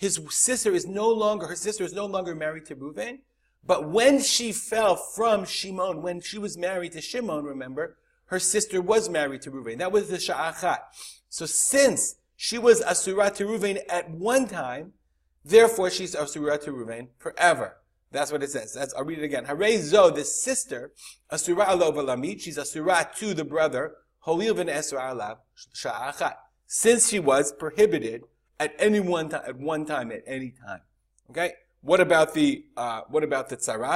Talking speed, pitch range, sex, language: 175 wpm, 150-225 Hz, male, English